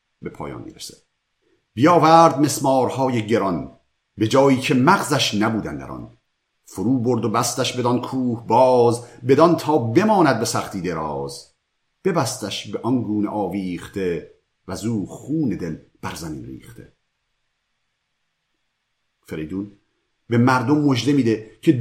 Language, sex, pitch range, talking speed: Persian, male, 105-150 Hz, 120 wpm